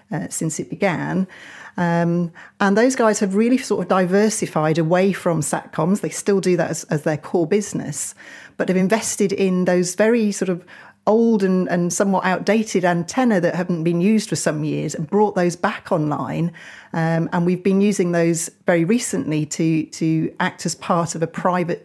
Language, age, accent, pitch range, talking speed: English, 30-49, British, 165-200 Hz, 185 wpm